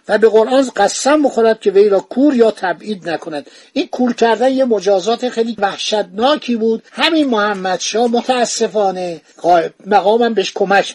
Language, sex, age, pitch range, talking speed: Persian, male, 50-69, 190-235 Hz, 145 wpm